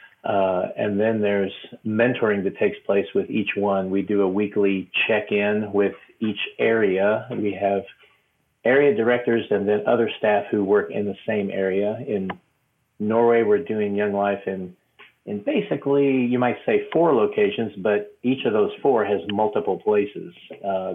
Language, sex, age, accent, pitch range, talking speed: English, male, 40-59, American, 95-115 Hz, 165 wpm